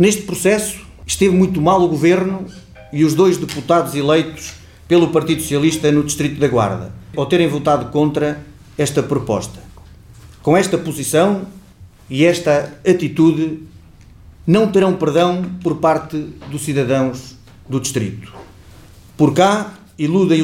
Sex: male